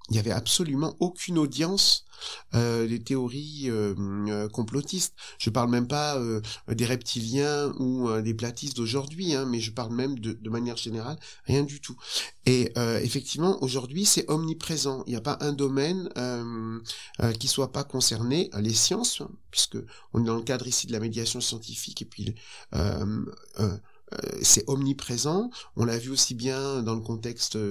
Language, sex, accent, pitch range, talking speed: French, male, French, 110-140 Hz, 175 wpm